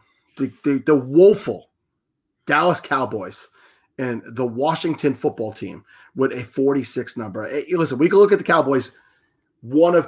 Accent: American